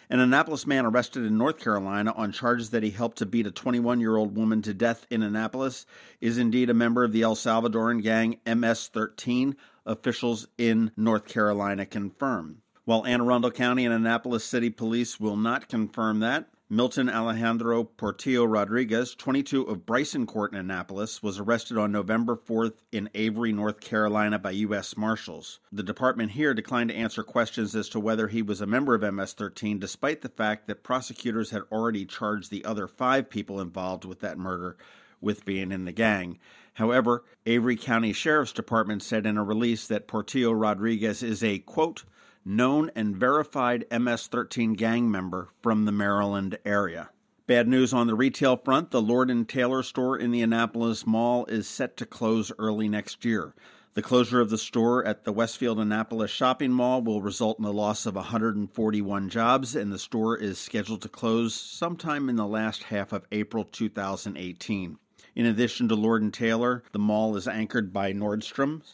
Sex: male